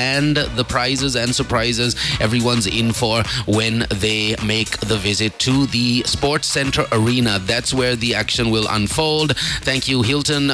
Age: 30-49